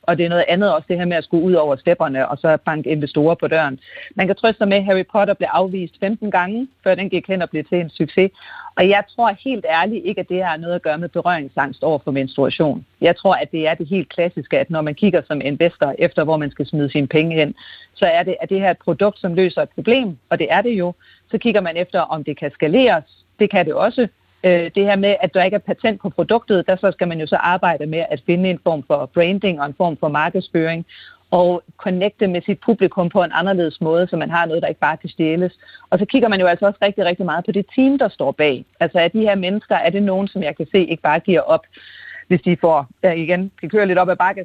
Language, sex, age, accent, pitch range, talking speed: Danish, female, 40-59, native, 165-200 Hz, 270 wpm